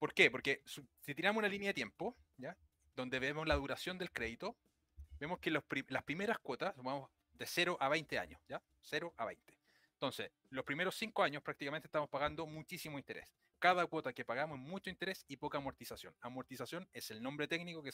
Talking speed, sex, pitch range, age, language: 195 wpm, male, 125-175 Hz, 30-49, Spanish